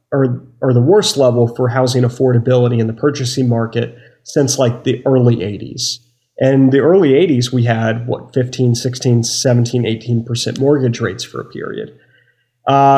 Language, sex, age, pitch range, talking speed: English, male, 30-49, 120-140 Hz, 155 wpm